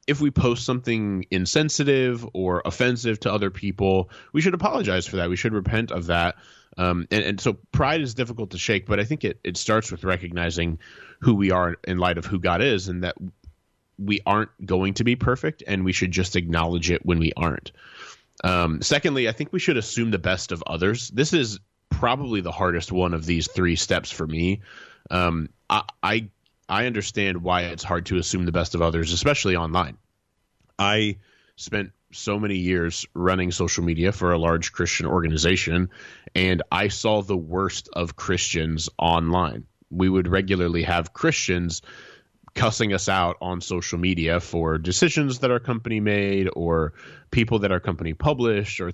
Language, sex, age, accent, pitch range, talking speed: English, male, 20-39, American, 85-105 Hz, 180 wpm